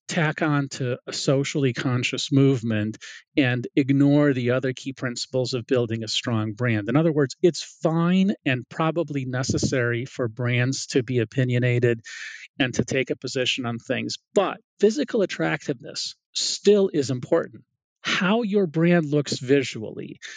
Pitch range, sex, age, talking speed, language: 125-155 Hz, male, 40-59, 145 wpm, English